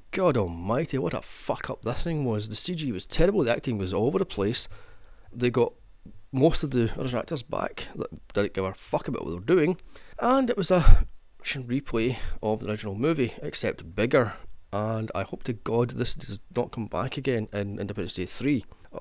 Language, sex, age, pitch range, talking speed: English, male, 30-49, 105-145 Hz, 200 wpm